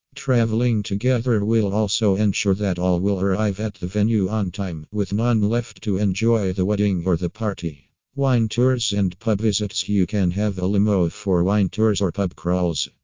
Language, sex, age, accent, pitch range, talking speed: English, male, 50-69, American, 95-110 Hz, 185 wpm